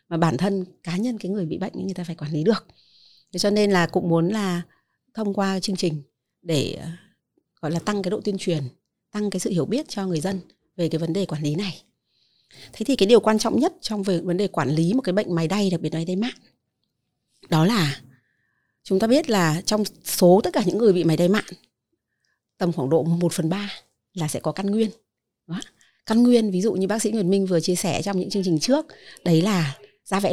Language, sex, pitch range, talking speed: Vietnamese, female, 170-210 Hz, 240 wpm